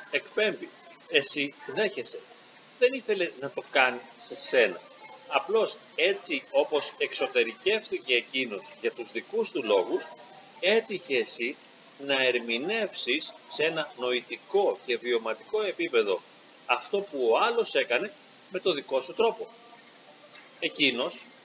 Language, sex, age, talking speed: Greek, male, 40-59, 115 wpm